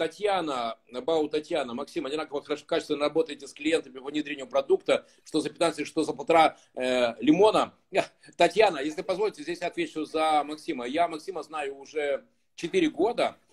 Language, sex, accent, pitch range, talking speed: Russian, male, native, 150-215 Hz, 155 wpm